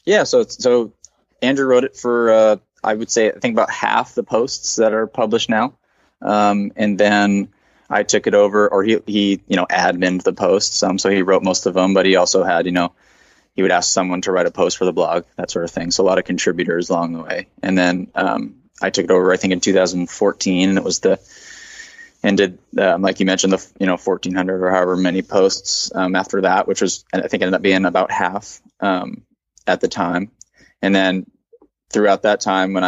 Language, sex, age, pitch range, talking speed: English, male, 20-39, 90-105 Hz, 225 wpm